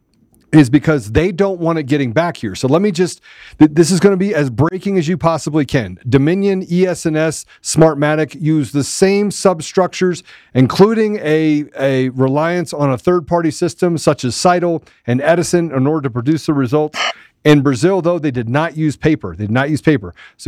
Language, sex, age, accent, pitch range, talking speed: English, male, 40-59, American, 125-160 Hz, 190 wpm